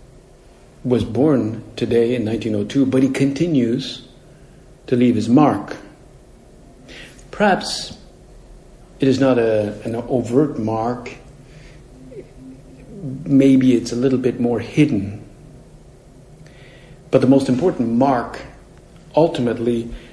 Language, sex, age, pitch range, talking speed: English, male, 60-79, 110-135 Hz, 100 wpm